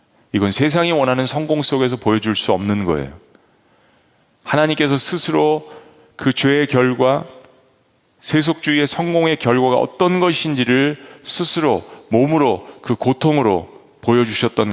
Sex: male